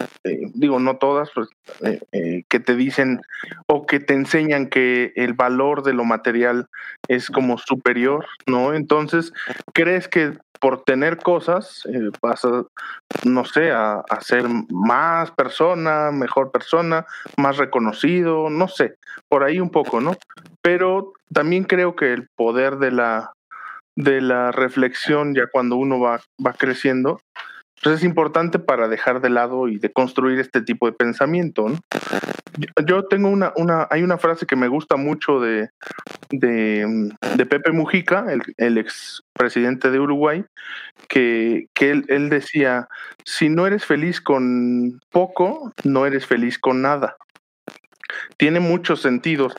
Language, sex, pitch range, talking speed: Spanish, male, 125-165 Hz, 145 wpm